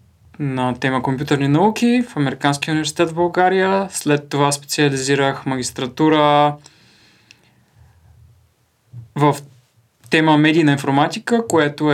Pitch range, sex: 125-155 Hz, male